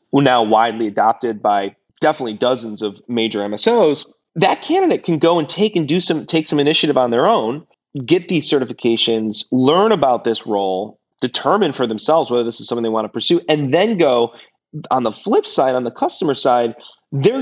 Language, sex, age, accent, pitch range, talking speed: English, male, 30-49, American, 115-150 Hz, 190 wpm